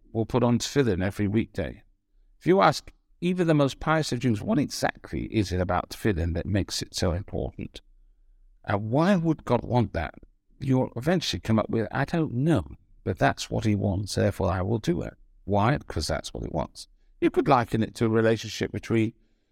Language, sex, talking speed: English, male, 195 wpm